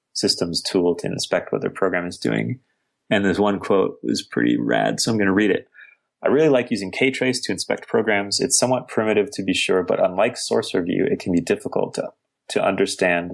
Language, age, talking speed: English, 30-49, 205 wpm